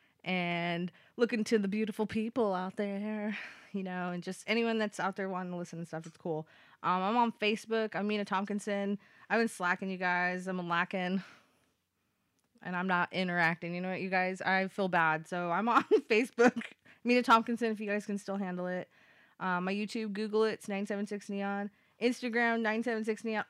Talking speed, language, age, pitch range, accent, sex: 180 wpm, English, 20-39, 180-215 Hz, American, female